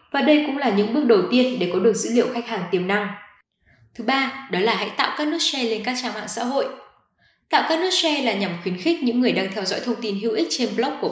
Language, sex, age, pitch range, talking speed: Vietnamese, female, 20-39, 205-270 Hz, 280 wpm